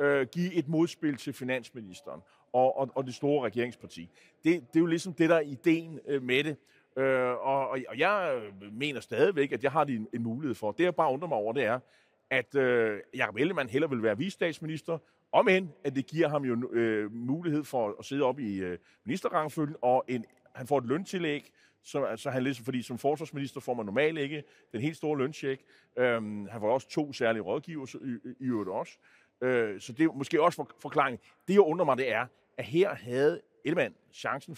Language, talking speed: Danish, 200 wpm